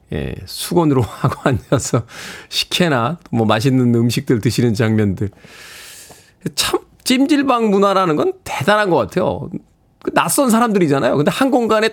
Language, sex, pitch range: Korean, male, 115-165 Hz